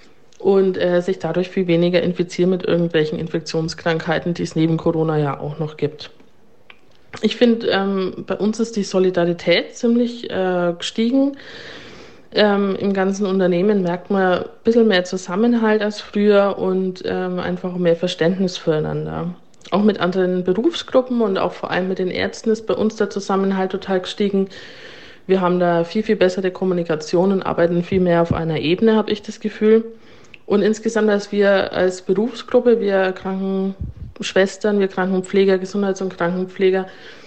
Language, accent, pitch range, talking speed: German, German, 175-215 Hz, 155 wpm